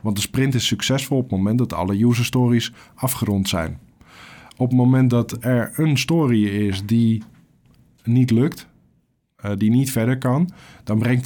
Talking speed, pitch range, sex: 160 wpm, 105-130 Hz, male